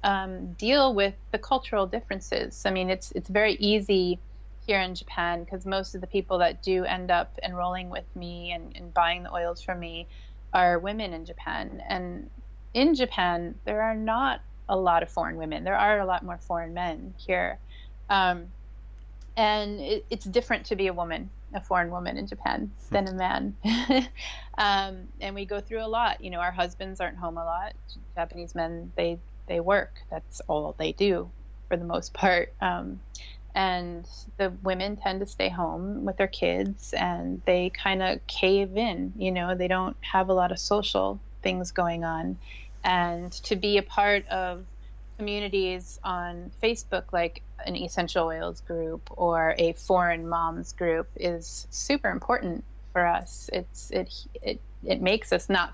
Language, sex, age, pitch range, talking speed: English, female, 30-49, 170-200 Hz, 175 wpm